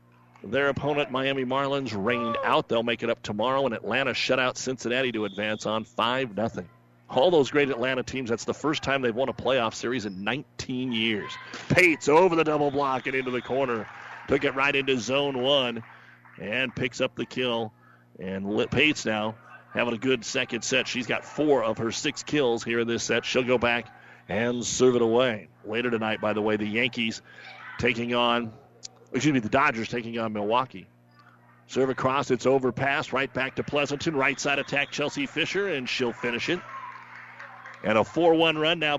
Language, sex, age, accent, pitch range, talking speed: English, male, 40-59, American, 115-135 Hz, 185 wpm